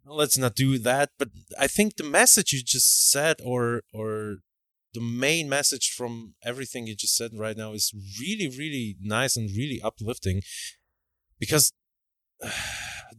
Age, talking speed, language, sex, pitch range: 30-49, 150 wpm, Slovak, male, 105-130 Hz